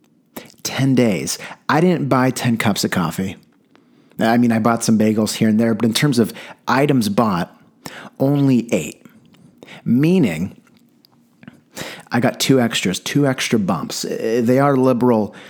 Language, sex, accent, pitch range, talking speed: English, male, American, 110-130 Hz, 140 wpm